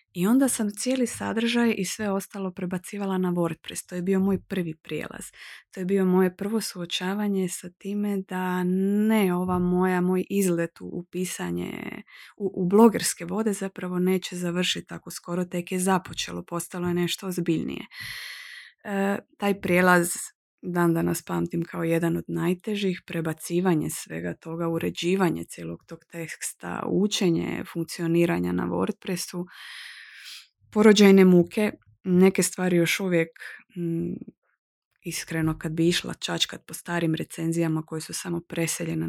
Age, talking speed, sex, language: 20-39, 135 wpm, female, English